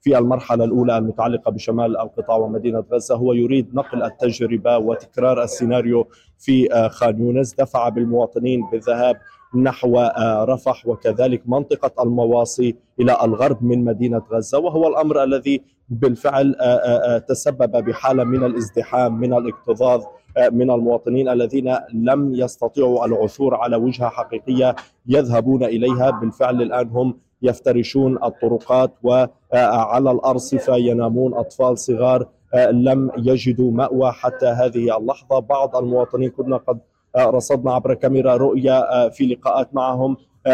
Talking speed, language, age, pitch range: 115 wpm, Arabic, 20-39, 120-135 Hz